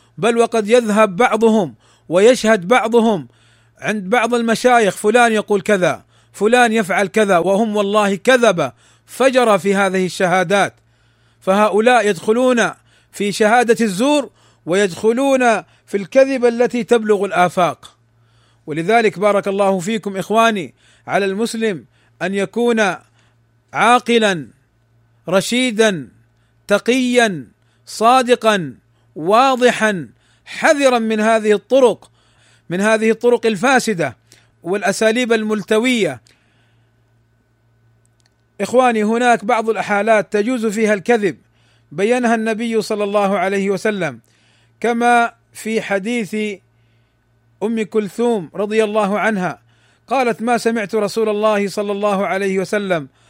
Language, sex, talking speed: Arabic, male, 100 wpm